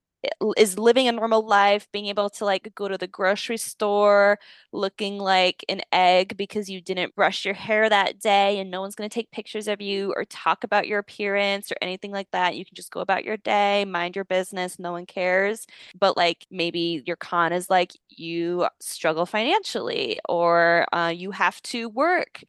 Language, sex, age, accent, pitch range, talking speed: English, female, 20-39, American, 180-220 Hz, 195 wpm